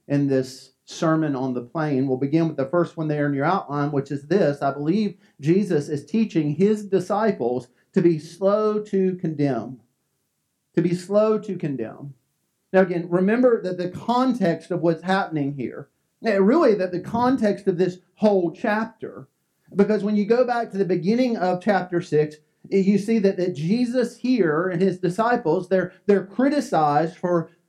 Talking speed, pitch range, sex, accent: 165 wpm, 170-225 Hz, male, American